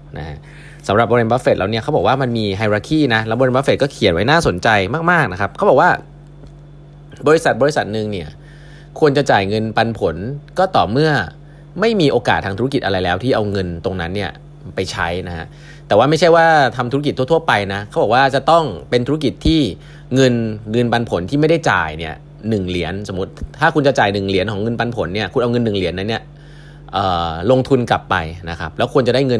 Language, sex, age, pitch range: Thai, male, 20-39, 95-145 Hz